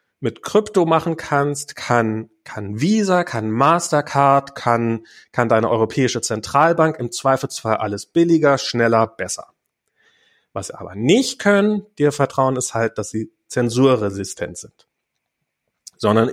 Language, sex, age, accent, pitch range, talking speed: German, male, 40-59, German, 115-150 Hz, 125 wpm